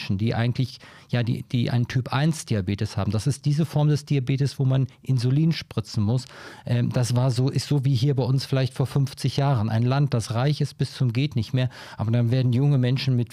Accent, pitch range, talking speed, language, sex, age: German, 120-135 Hz, 220 wpm, German, male, 40-59